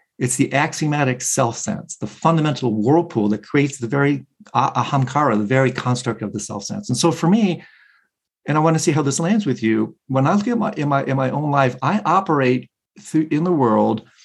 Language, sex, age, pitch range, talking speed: English, male, 50-69, 120-160 Hz, 200 wpm